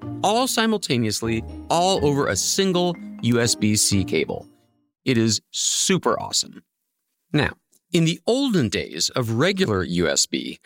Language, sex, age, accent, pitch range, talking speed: English, male, 40-59, American, 120-195 Hz, 115 wpm